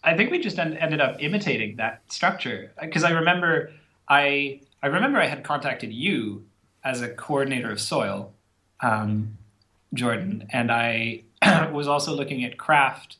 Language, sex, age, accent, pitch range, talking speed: English, male, 30-49, American, 110-140 Hz, 160 wpm